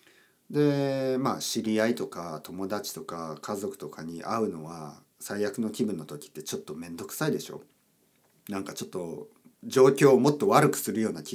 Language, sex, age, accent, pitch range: Japanese, male, 40-59, native, 95-140 Hz